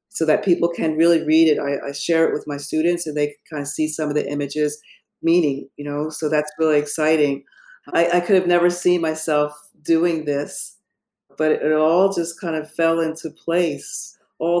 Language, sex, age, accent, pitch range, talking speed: English, female, 50-69, American, 155-185 Hz, 205 wpm